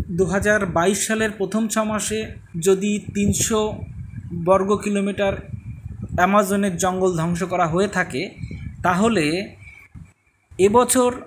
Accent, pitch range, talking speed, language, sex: native, 150-210 Hz, 90 wpm, Bengali, male